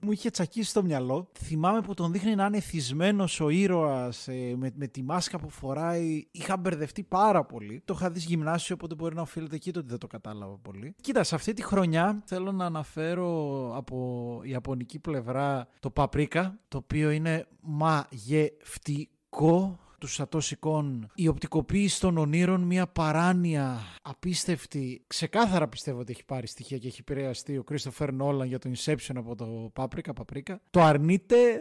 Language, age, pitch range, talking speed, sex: Greek, 30-49, 135-180 Hz, 160 wpm, male